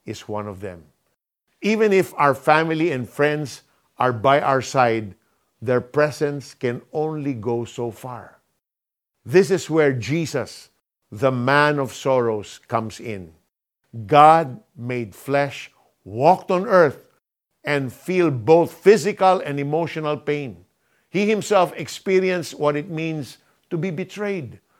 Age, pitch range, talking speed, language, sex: 50-69, 125-165 Hz, 130 wpm, Filipino, male